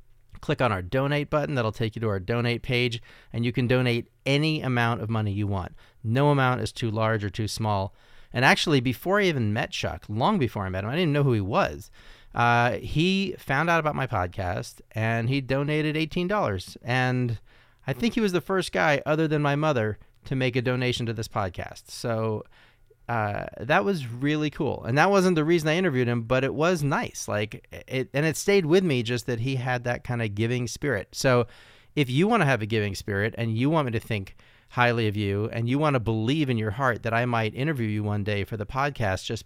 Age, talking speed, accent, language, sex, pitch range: 30-49, 225 wpm, American, English, male, 110-140 Hz